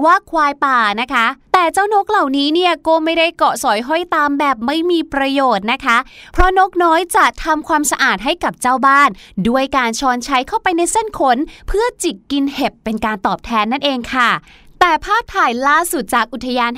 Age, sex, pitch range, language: 20-39, female, 235-320 Hz, Thai